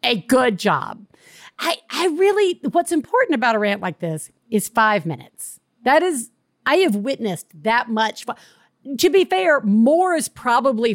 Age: 50-69